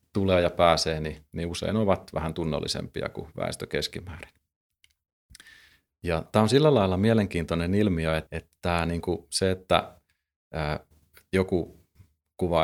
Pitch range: 80-95 Hz